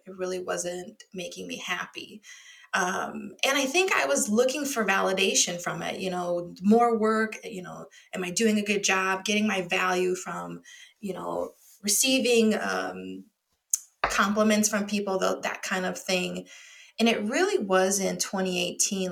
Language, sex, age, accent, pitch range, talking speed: English, female, 20-39, American, 185-230 Hz, 160 wpm